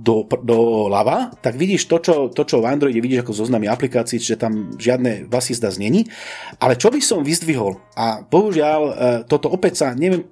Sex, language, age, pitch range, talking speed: male, Slovak, 40-59, 120-170 Hz, 180 wpm